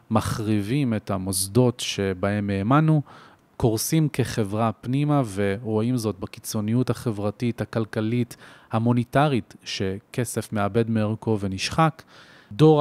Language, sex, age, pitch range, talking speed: Hebrew, male, 30-49, 110-140 Hz, 90 wpm